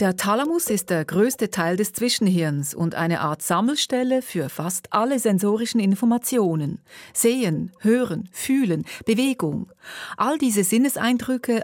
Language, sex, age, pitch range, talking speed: German, female, 40-59, 170-240 Hz, 125 wpm